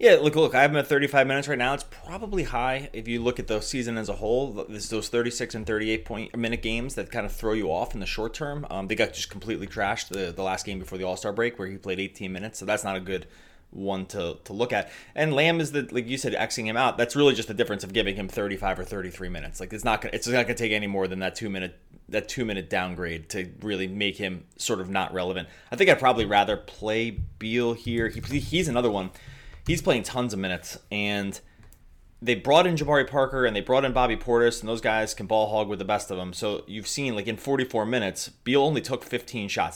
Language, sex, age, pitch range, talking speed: English, male, 20-39, 100-125 Hz, 265 wpm